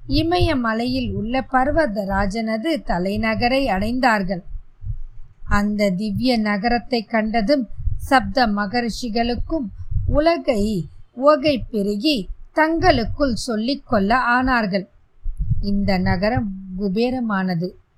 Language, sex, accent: Tamil, female, native